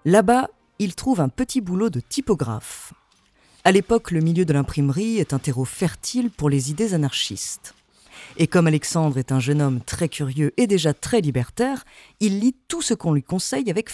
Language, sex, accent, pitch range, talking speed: French, female, French, 140-215 Hz, 185 wpm